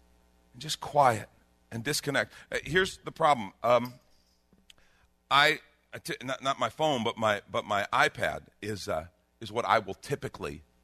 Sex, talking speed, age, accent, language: male, 140 wpm, 50-69, American, English